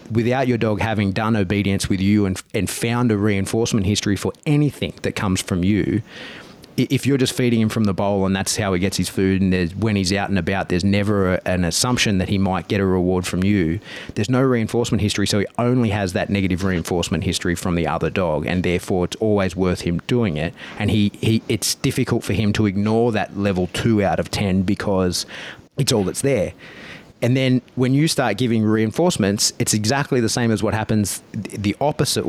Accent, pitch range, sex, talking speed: Australian, 95-120 Hz, male, 210 wpm